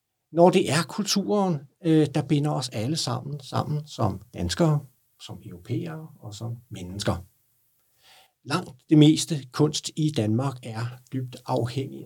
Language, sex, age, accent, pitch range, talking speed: Danish, male, 60-79, native, 120-160 Hz, 130 wpm